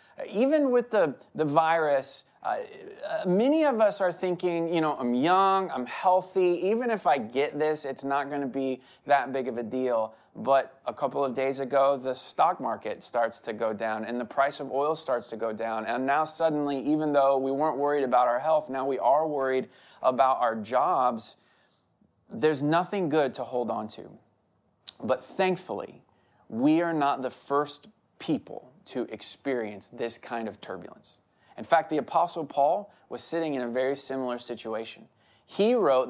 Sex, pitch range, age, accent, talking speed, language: male, 115-165 Hz, 20-39, American, 180 wpm, English